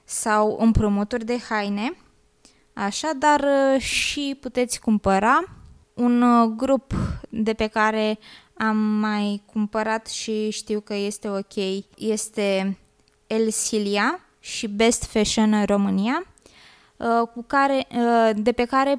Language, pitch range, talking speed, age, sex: Romanian, 205-235 Hz, 110 wpm, 20-39, female